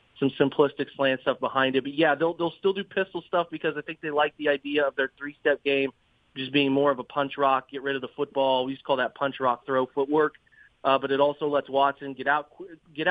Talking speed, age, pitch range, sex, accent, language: 250 wpm, 30-49, 135-150 Hz, male, American, English